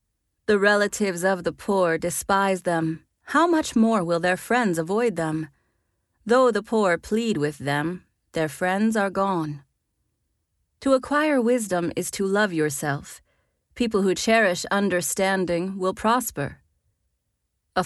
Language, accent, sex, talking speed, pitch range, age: English, American, female, 130 wpm, 165-220 Hz, 30-49